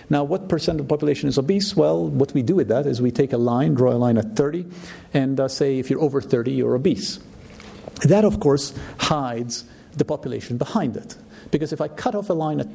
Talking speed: 230 wpm